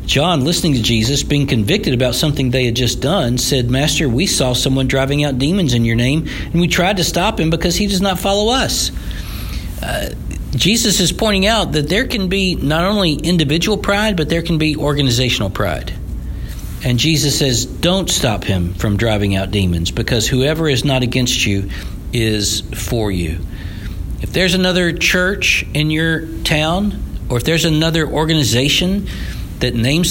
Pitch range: 105-165 Hz